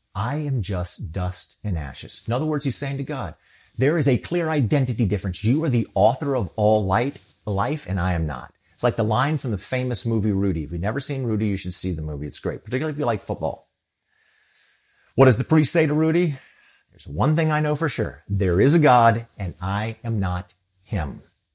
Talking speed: 225 wpm